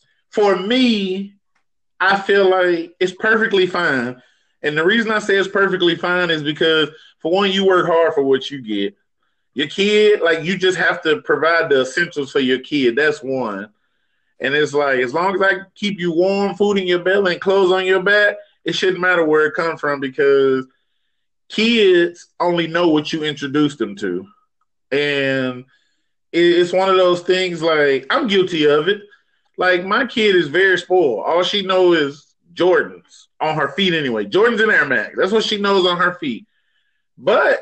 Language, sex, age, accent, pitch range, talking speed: English, male, 20-39, American, 155-205 Hz, 185 wpm